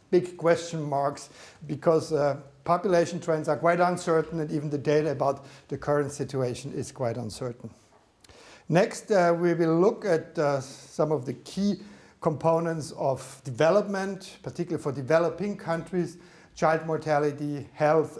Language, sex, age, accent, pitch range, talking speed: English, male, 60-79, German, 145-175 Hz, 140 wpm